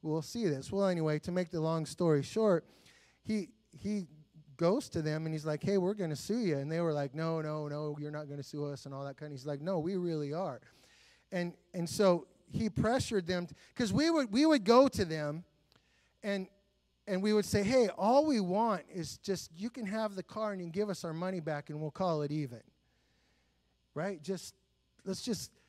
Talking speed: 225 wpm